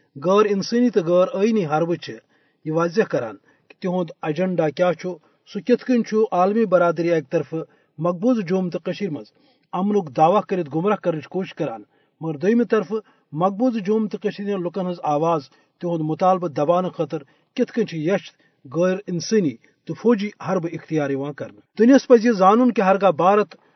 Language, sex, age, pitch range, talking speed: Urdu, male, 40-59, 160-205 Hz, 150 wpm